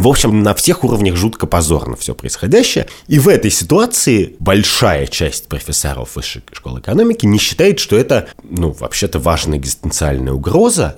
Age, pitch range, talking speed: 30-49, 75-105 Hz, 155 wpm